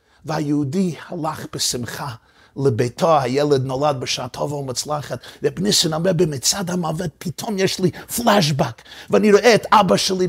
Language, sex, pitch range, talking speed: Hebrew, male, 135-180 Hz, 130 wpm